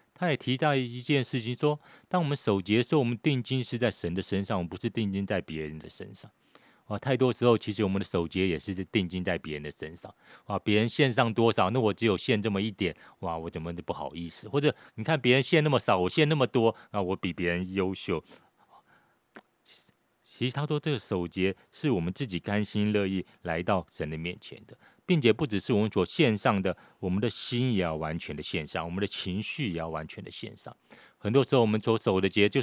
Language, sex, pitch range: Chinese, male, 90-125 Hz